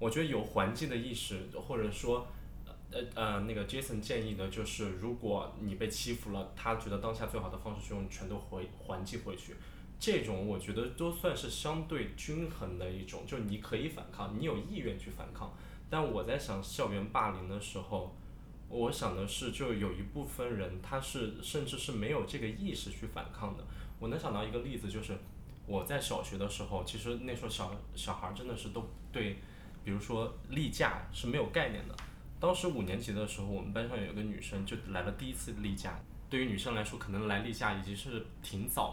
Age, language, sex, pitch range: 20-39, Chinese, male, 100-120 Hz